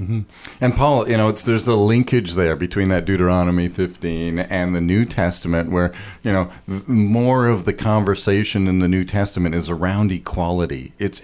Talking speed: 170 wpm